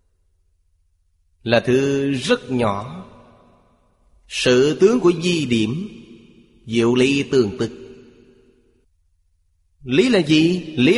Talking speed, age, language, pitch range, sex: 95 wpm, 30-49, Vietnamese, 85-145 Hz, male